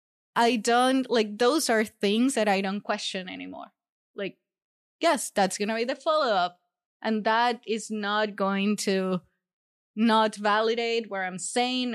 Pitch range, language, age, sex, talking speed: 195-235 Hz, English, 20-39, female, 145 wpm